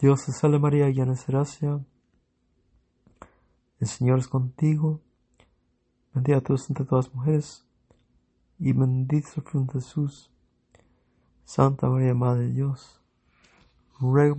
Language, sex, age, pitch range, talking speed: English, male, 50-69, 125-145 Hz, 125 wpm